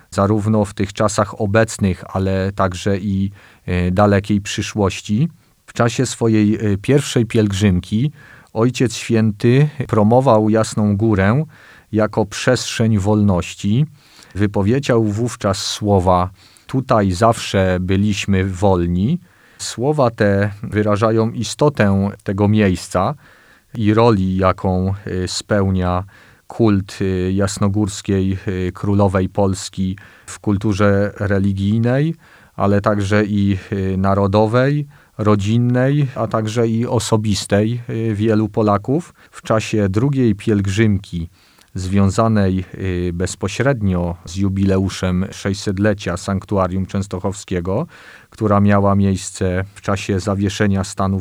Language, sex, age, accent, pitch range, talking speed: Polish, male, 40-59, native, 95-115 Hz, 90 wpm